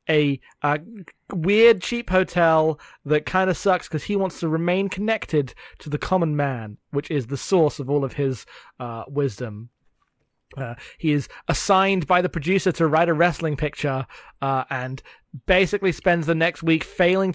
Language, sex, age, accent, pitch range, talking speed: English, male, 30-49, British, 140-185 Hz, 170 wpm